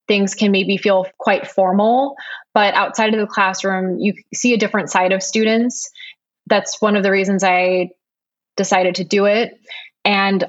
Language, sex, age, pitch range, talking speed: English, female, 20-39, 185-210 Hz, 165 wpm